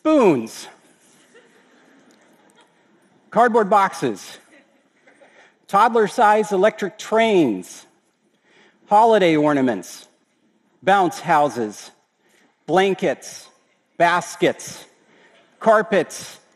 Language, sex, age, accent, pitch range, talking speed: Russian, male, 40-59, American, 165-215 Hz, 45 wpm